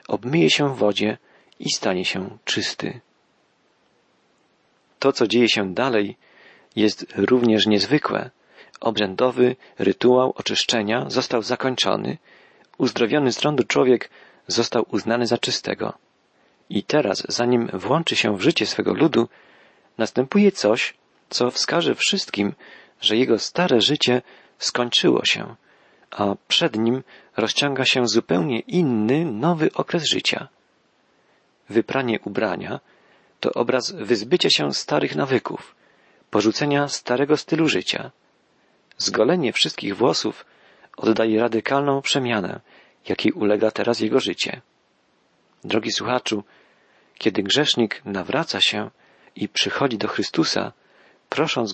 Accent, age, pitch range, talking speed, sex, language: native, 40-59, 110-140 Hz, 110 wpm, male, Polish